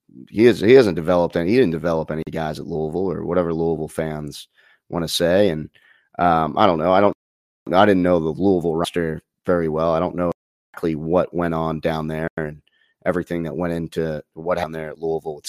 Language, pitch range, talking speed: English, 80-105 Hz, 215 wpm